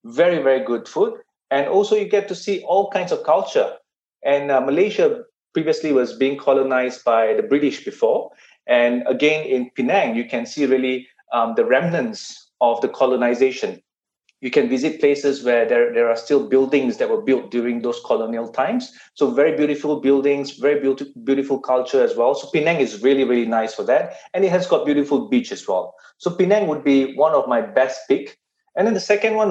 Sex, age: male, 30-49